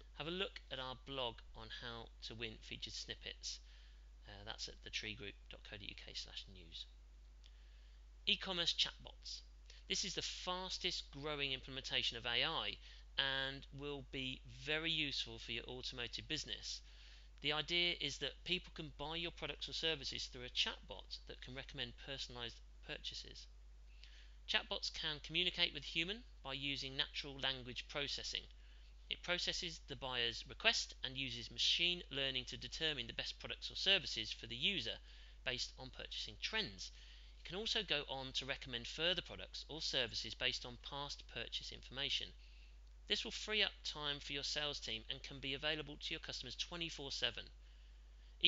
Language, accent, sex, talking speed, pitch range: English, British, male, 150 wpm, 110-150 Hz